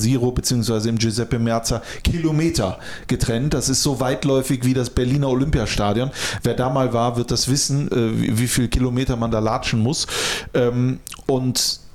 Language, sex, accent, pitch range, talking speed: German, male, German, 120-145 Hz, 150 wpm